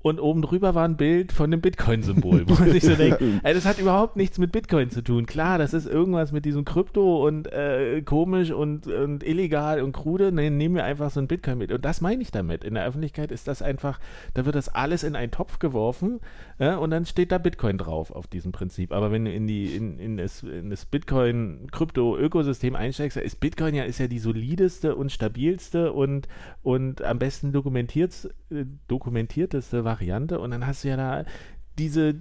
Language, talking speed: German, 205 wpm